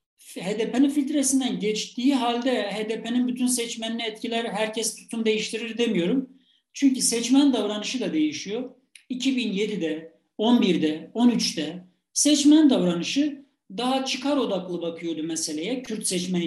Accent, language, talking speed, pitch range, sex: native, Turkish, 105 wpm, 195-255 Hz, male